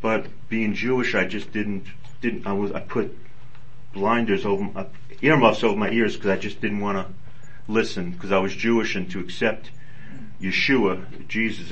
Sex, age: male, 40-59